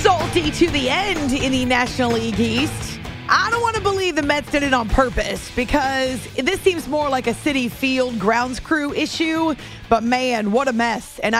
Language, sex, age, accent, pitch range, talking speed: English, female, 30-49, American, 225-290 Hz, 195 wpm